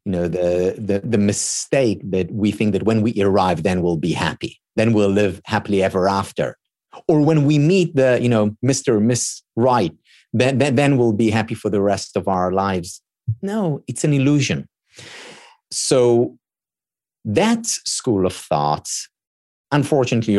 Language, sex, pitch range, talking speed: English, male, 100-145 Hz, 160 wpm